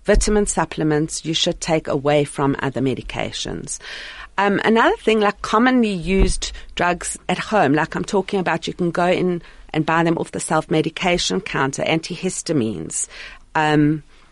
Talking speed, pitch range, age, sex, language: 145 wpm, 155-200 Hz, 40-59, female, English